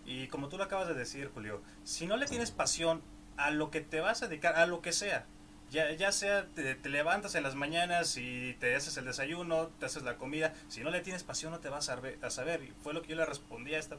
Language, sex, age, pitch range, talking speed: Spanish, male, 20-39, 130-160 Hz, 260 wpm